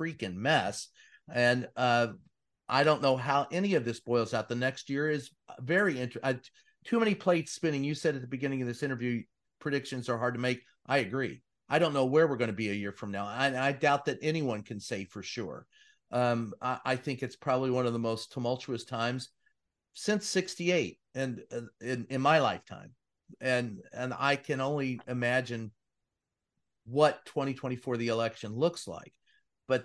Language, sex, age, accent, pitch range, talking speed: English, male, 40-59, American, 125-150 Hz, 185 wpm